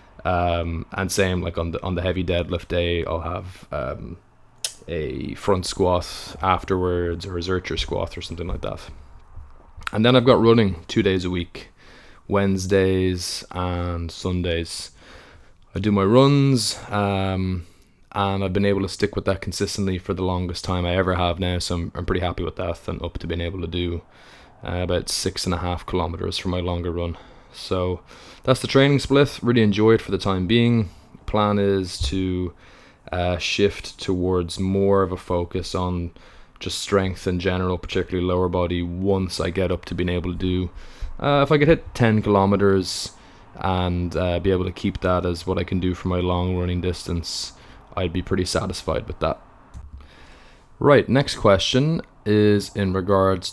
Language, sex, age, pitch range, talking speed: English, male, 20-39, 85-100 Hz, 180 wpm